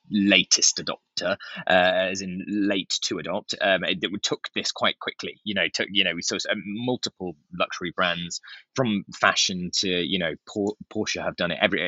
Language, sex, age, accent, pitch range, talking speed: English, male, 20-39, British, 90-105 Hz, 185 wpm